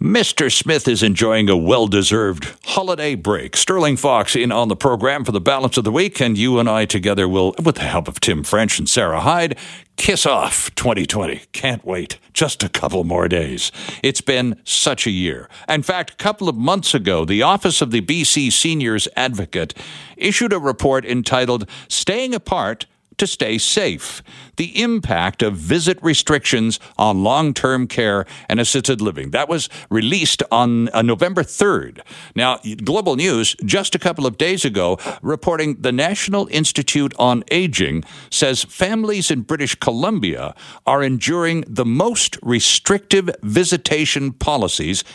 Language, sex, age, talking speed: English, male, 60-79, 155 wpm